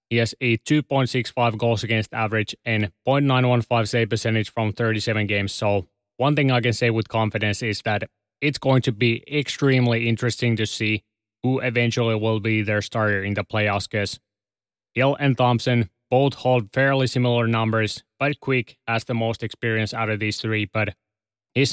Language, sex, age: English, male, 20-39